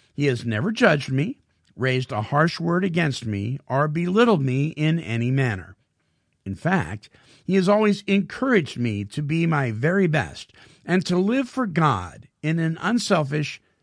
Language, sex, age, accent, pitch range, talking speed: English, male, 50-69, American, 120-170 Hz, 160 wpm